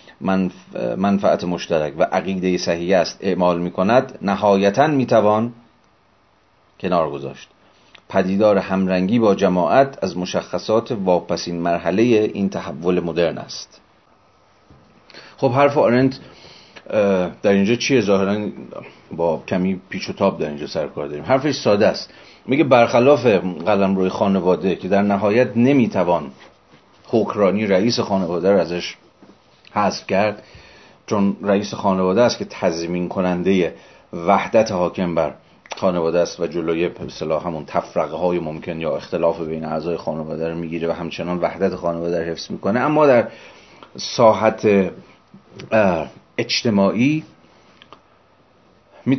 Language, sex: Persian, male